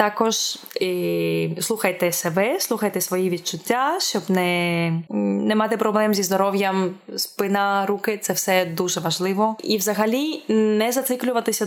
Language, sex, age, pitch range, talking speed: Ukrainian, female, 20-39, 175-210 Hz, 130 wpm